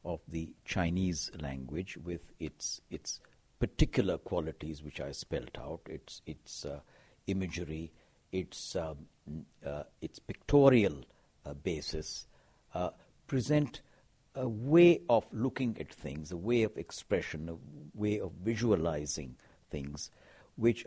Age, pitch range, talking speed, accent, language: 60-79, 85-125 Hz, 125 wpm, Indian, English